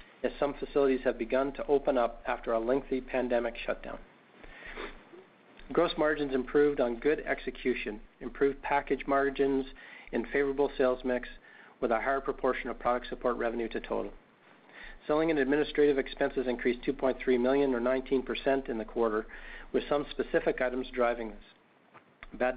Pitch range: 120-140 Hz